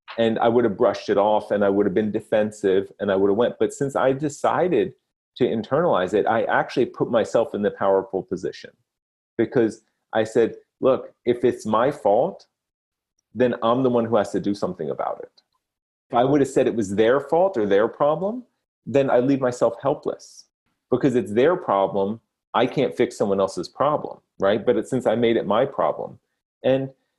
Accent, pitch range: American, 105-140 Hz